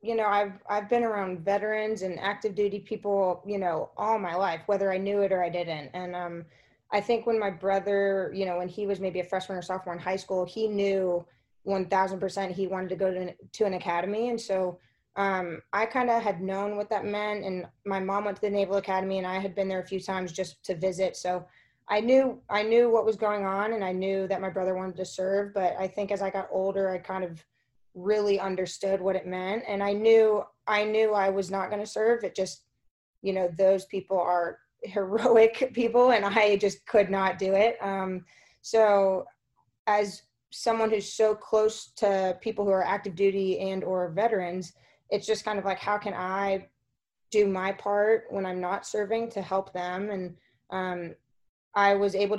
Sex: female